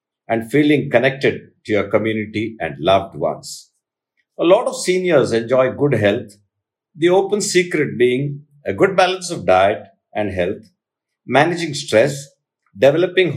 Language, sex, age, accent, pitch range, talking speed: English, male, 50-69, Indian, 110-155 Hz, 135 wpm